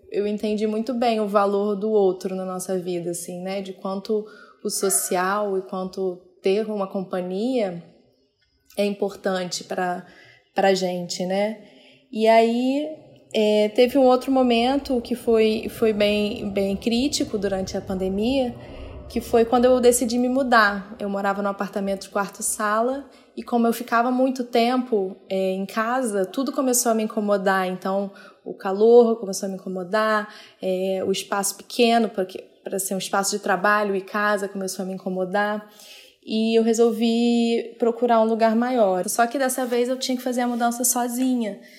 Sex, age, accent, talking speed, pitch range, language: female, 20-39, Brazilian, 165 wpm, 195-235 Hz, Portuguese